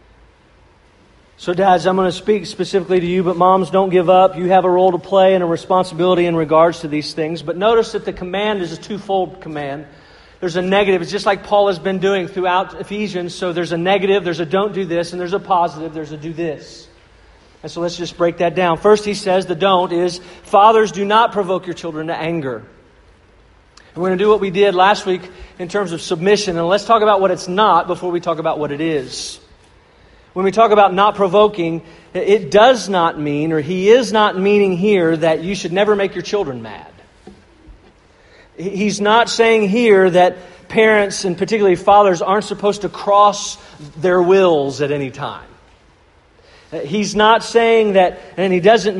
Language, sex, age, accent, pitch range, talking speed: English, male, 40-59, American, 170-205 Hz, 200 wpm